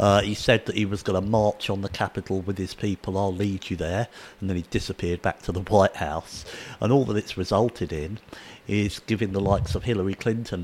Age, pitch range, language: 50-69, 100-120 Hz, English